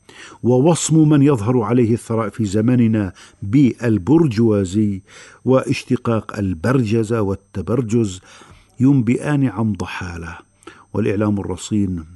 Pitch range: 100-125 Hz